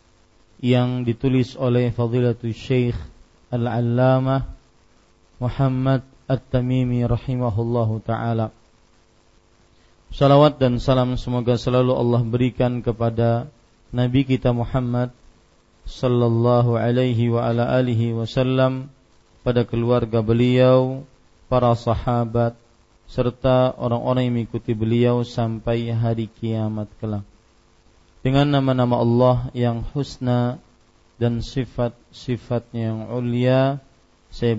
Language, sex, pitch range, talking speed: Malay, male, 115-125 Hz, 90 wpm